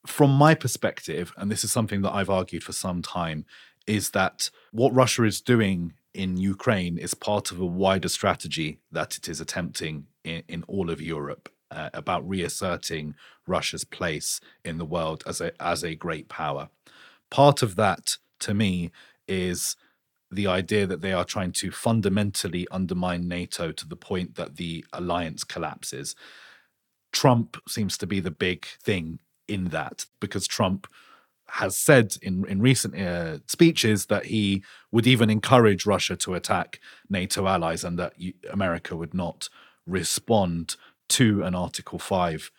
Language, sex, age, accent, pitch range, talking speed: English, male, 30-49, British, 90-110 Hz, 155 wpm